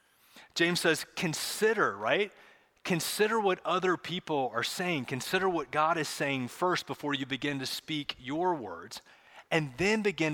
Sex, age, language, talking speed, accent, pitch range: male, 30-49, English, 150 wpm, American, 125-165 Hz